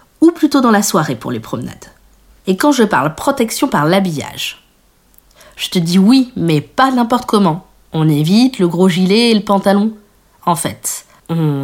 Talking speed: 175 wpm